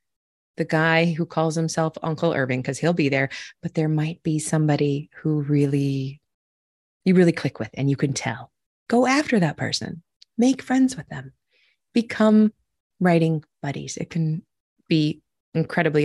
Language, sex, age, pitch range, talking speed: English, female, 30-49, 145-215 Hz, 155 wpm